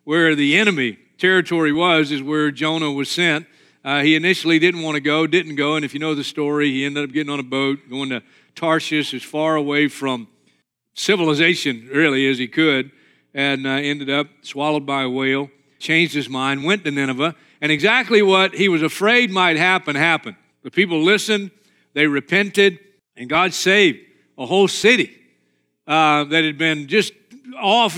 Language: English